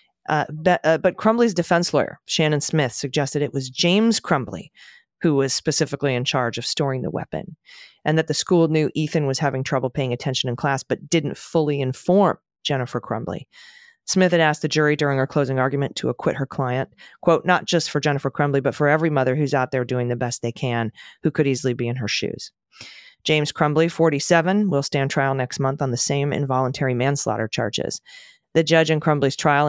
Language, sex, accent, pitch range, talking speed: English, female, American, 135-165 Hz, 200 wpm